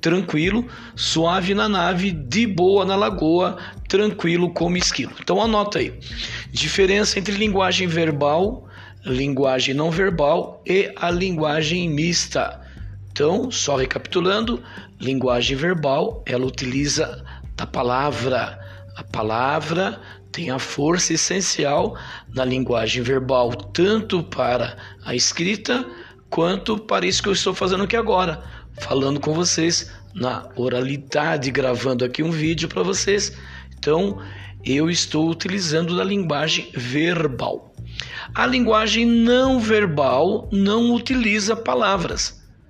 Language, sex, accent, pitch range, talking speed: Portuguese, male, Brazilian, 120-180 Hz, 115 wpm